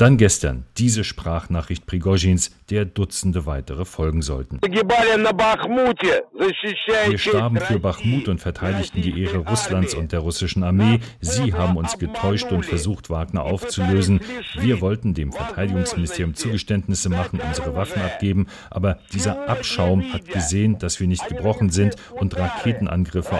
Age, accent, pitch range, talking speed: 40-59, German, 85-105 Hz, 135 wpm